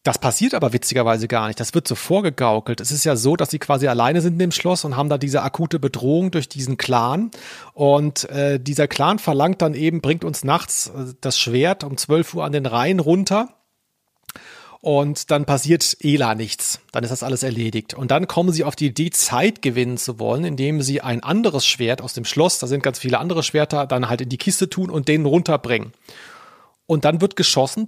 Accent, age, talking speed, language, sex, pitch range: German, 40-59, 215 wpm, German, male, 130-170 Hz